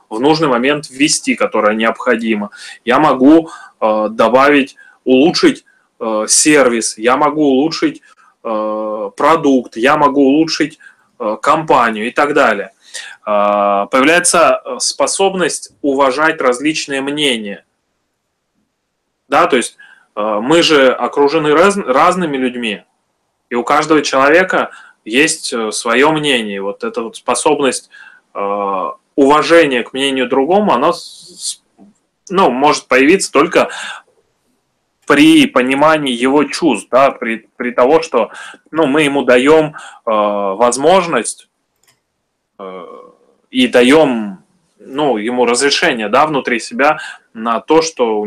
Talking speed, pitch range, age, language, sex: 105 wpm, 120-170 Hz, 20-39, Russian, male